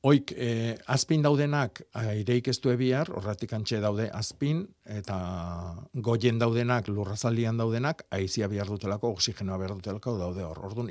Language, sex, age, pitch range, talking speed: Spanish, male, 50-69, 105-130 Hz, 125 wpm